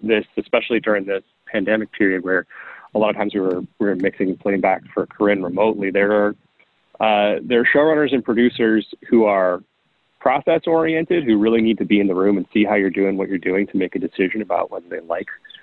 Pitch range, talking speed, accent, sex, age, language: 95-110 Hz, 215 wpm, American, male, 30-49, English